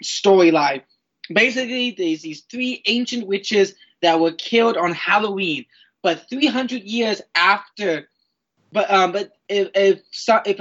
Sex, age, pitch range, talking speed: male, 20-39, 170-220 Hz, 125 wpm